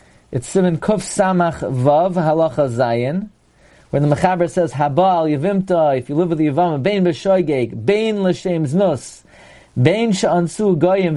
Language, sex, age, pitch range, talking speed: English, male, 40-59, 150-210 Hz, 145 wpm